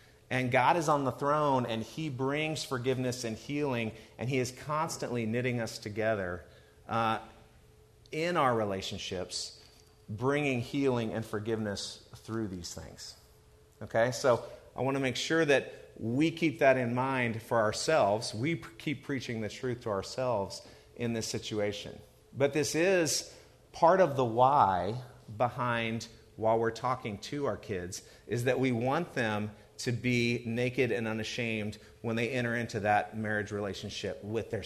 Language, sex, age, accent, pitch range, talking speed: English, male, 40-59, American, 110-140 Hz, 150 wpm